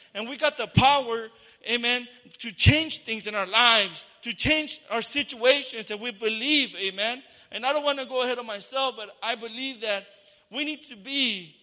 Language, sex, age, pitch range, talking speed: English, male, 30-49, 215-270 Hz, 190 wpm